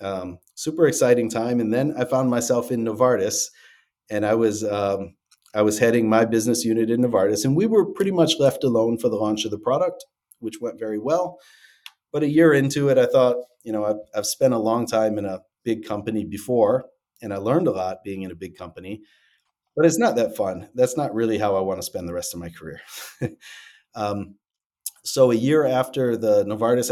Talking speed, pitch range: 210 wpm, 100-125 Hz